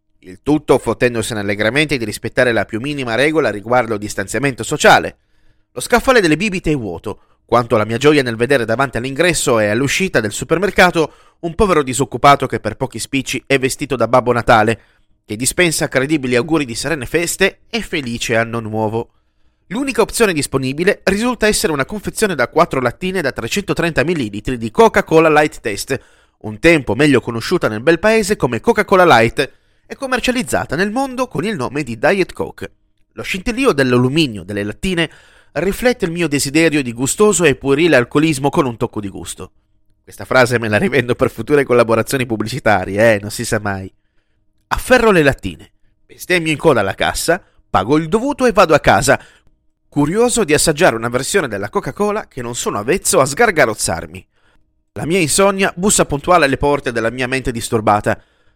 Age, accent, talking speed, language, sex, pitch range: 30-49, native, 170 wpm, Italian, male, 115-175 Hz